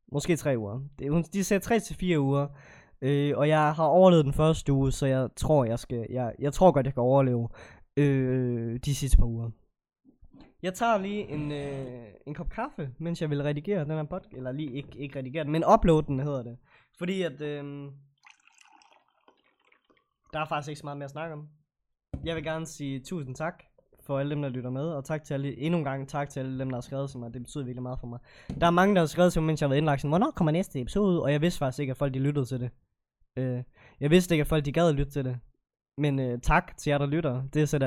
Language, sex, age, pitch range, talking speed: Danish, male, 20-39, 130-160 Hz, 245 wpm